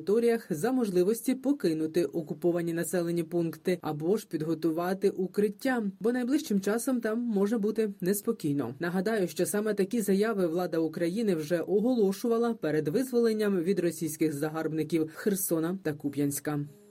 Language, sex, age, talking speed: Ukrainian, female, 20-39, 120 wpm